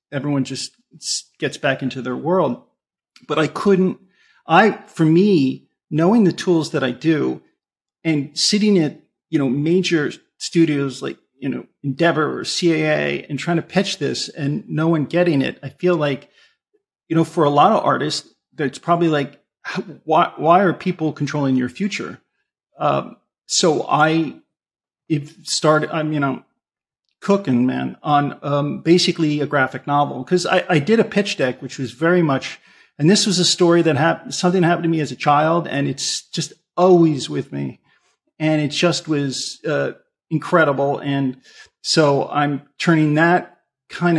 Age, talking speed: 40-59, 165 wpm